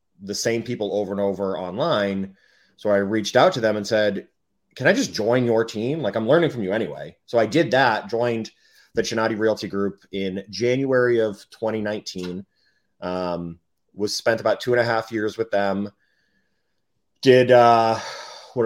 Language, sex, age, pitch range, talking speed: English, male, 30-49, 100-120 Hz, 175 wpm